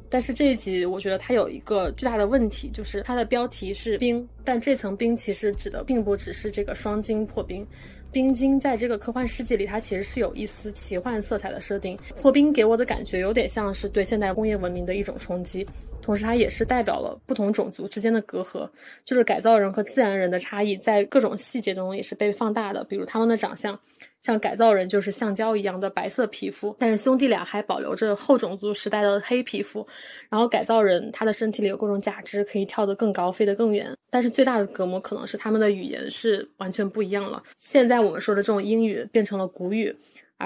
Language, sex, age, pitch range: Chinese, female, 20-39, 200-230 Hz